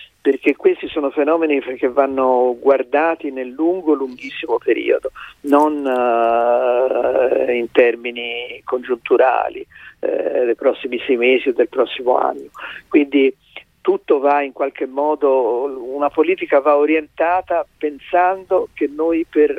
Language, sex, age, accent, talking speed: Italian, male, 50-69, native, 120 wpm